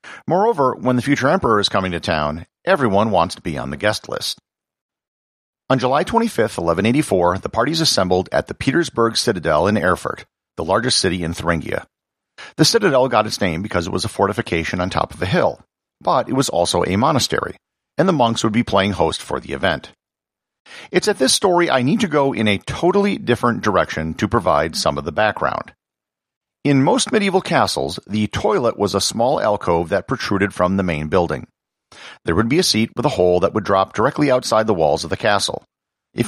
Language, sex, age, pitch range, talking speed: English, male, 50-69, 95-135 Hz, 200 wpm